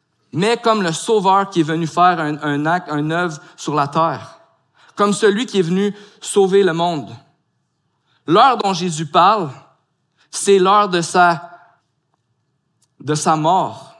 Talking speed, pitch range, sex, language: 150 wpm, 150-195 Hz, male, French